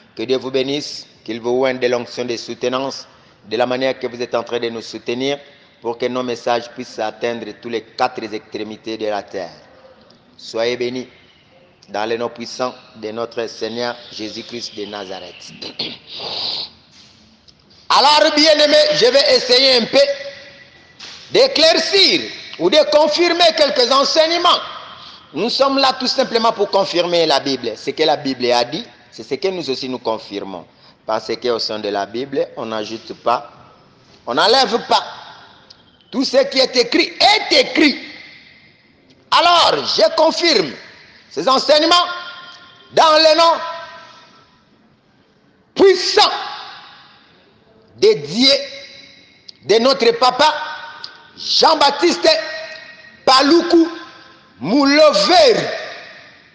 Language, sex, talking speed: English, male, 125 wpm